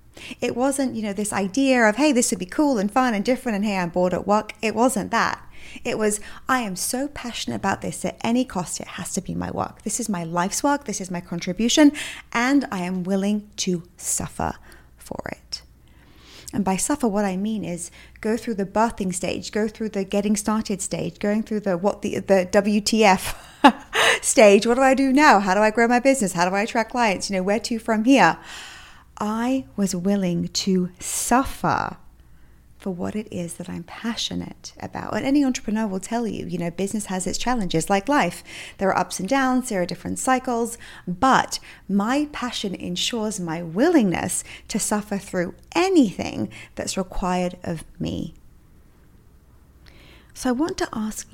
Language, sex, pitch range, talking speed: English, female, 185-245 Hz, 190 wpm